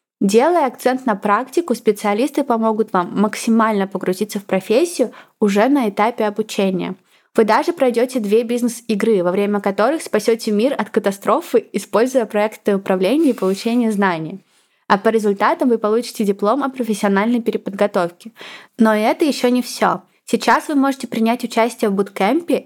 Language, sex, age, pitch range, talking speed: Russian, female, 20-39, 205-250 Hz, 145 wpm